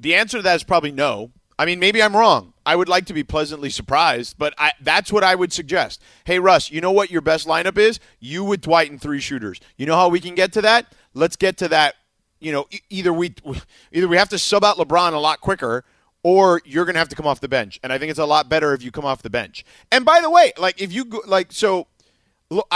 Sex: male